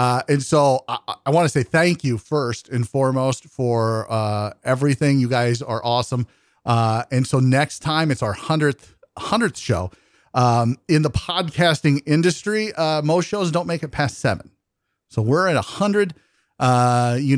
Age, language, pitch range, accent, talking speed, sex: 40-59, English, 115-160 Hz, American, 175 wpm, male